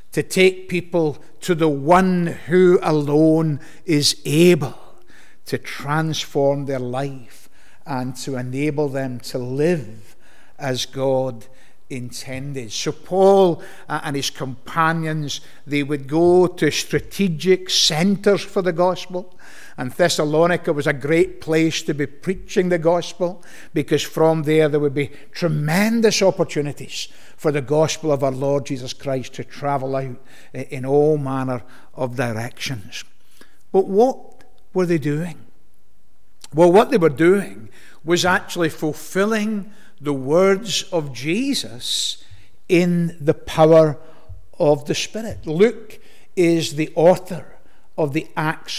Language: English